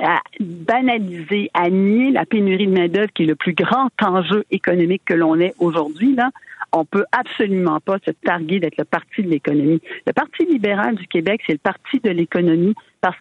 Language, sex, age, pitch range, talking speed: French, female, 50-69, 180-245 Hz, 200 wpm